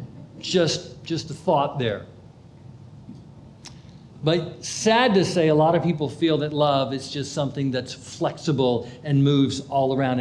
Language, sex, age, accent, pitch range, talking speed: English, male, 50-69, American, 140-185 Hz, 145 wpm